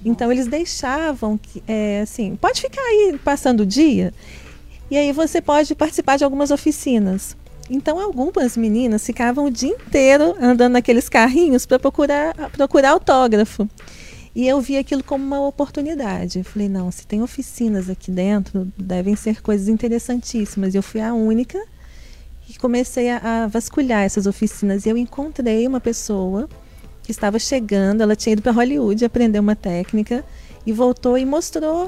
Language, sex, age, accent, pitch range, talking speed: Portuguese, female, 40-59, Brazilian, 215-280 Hz, 160 wpm